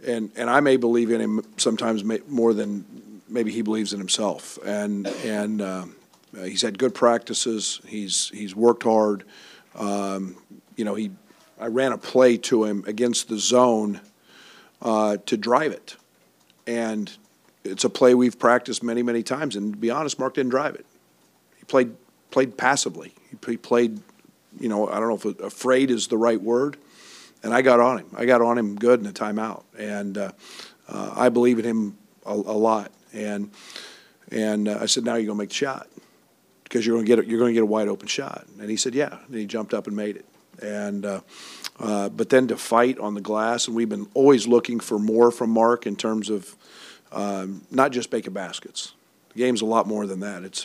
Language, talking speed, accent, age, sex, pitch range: English, 200 wpm, American, 50-69, male, 105-120 Hz